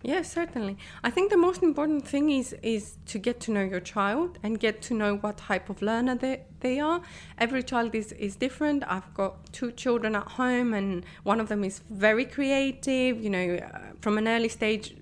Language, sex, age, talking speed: English, female, 20-39, 210 wpm